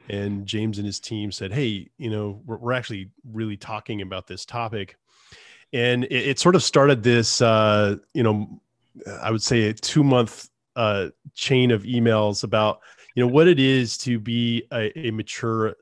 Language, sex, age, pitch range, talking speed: English, male, 30-49, 110-130 Hz, 180 wpm